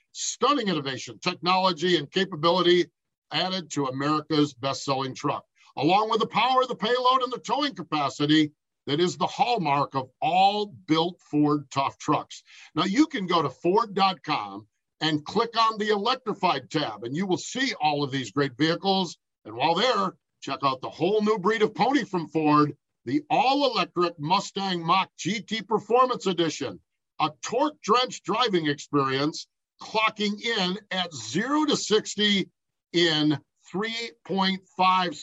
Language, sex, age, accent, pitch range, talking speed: English, male, 50-69, American, 145-200 Hz, 140 wpm